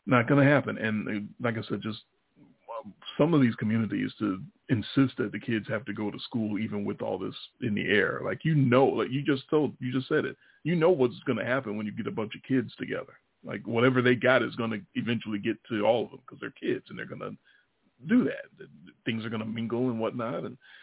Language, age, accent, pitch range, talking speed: English, 40-59, American, 105-130 Hz, 245 wpm